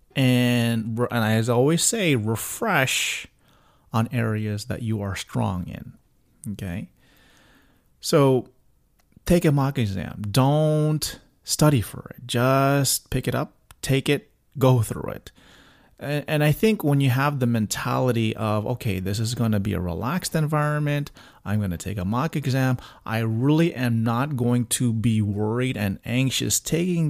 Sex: male